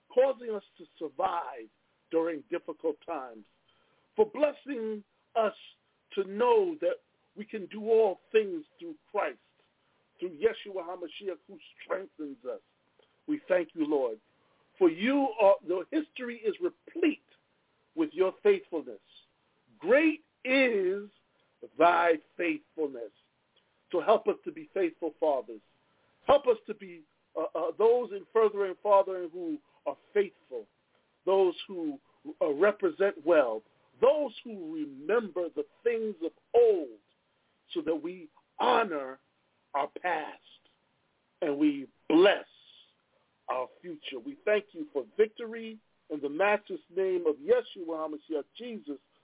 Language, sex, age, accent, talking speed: English, male, 50-69, American, 125 wpm